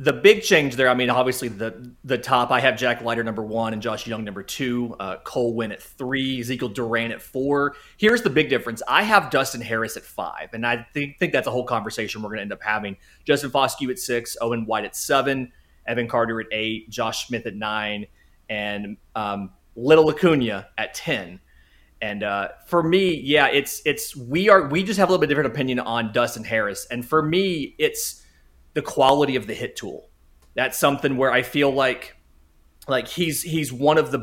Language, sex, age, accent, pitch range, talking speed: English, male, 30-49, American, 110-140 Hz, 205 wpm